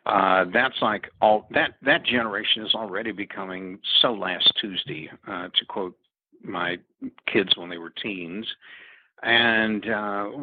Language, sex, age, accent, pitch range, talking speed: English, male, 60-79, American, 95-110 Hz, 140 wpm